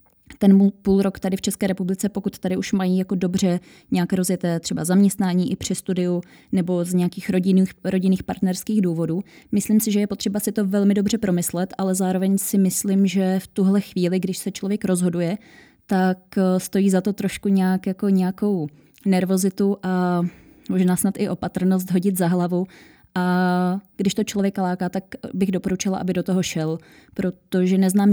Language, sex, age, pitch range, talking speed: Czech, female, 20-39, 185-200 Hz, 165 wpm